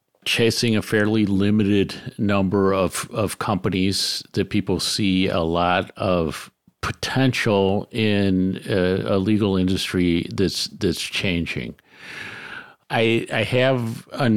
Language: English